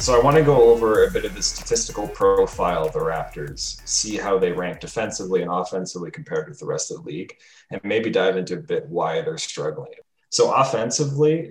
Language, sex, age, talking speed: English, male, 20-39, 210 wpm